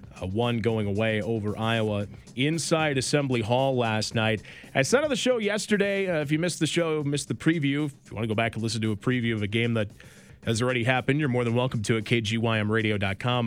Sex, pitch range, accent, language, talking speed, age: male, 110-145 Hz, American, English, 230 wpm, 30-49